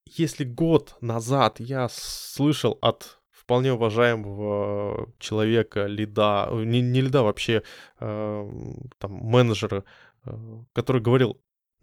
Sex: male